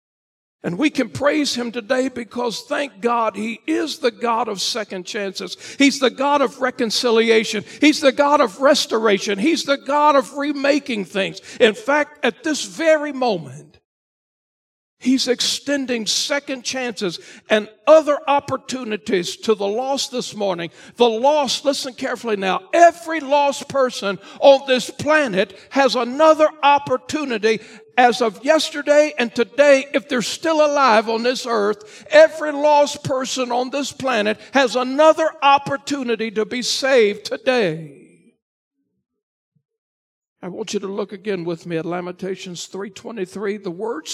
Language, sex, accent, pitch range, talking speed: English, male, American, 215-280 Hz, 140 wpm